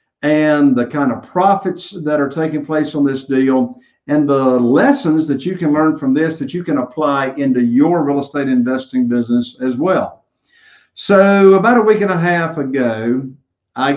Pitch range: 130-180 Hz